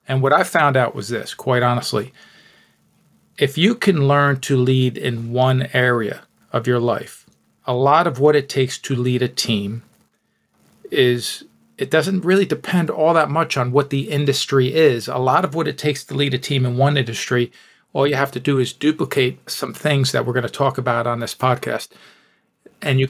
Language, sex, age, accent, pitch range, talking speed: English, male, 40-59, American, 125-140 Hz, 200 wpm